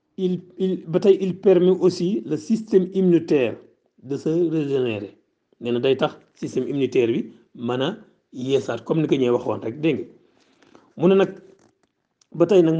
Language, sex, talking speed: Italian, male, 120 wpm